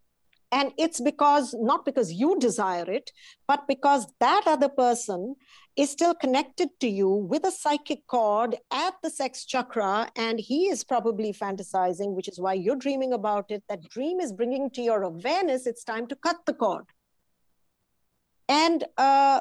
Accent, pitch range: Indian, 215-280 Hz